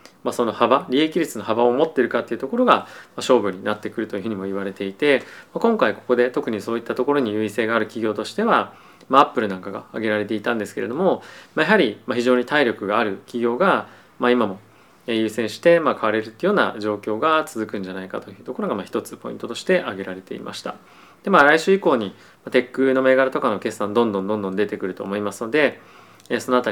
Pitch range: 105-130 Hz